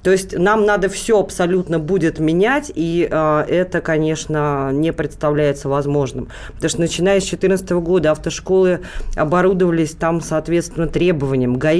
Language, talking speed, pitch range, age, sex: Russian, 135 wpm, 165-200 Hz, 20-39, female